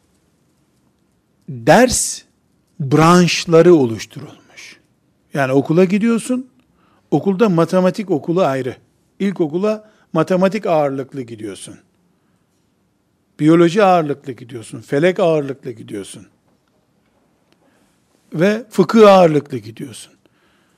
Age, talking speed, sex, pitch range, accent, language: 60-79, 70 wpm, male, 150-210 Hz, native, Turkish